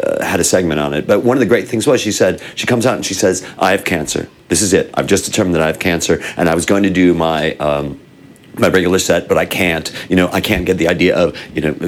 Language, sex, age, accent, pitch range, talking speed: English, male, 50-69, American, 95-145 Hz, 285 wpm